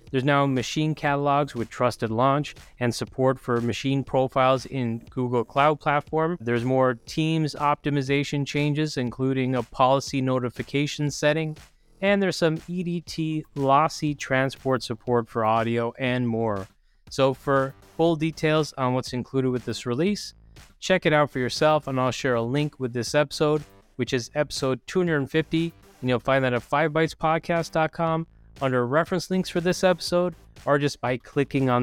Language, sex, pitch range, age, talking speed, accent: English, male, 120-150 Hz, 20-39, 155 wpm, American